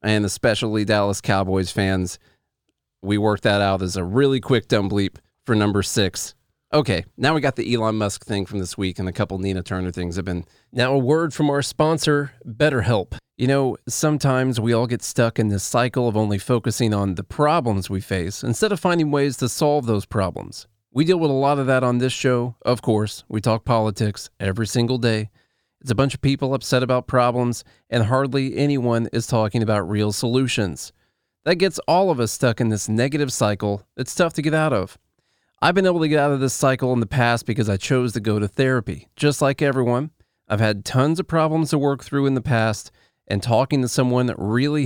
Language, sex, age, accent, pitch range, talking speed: English, male, 40-59, American, 105-135 Hz, 215 wpm